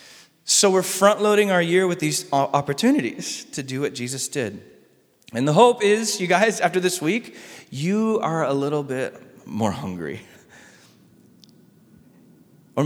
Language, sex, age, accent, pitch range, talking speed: English, male, 30-49, American, 130-190 Hz, 140 wpm